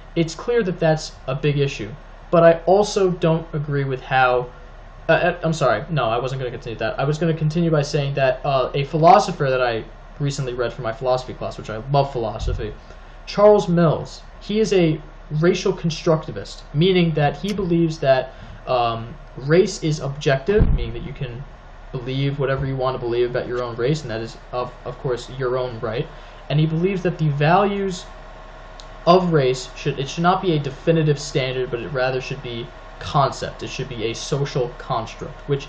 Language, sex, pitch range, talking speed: English, male, 125-160 Hz, 195 wpm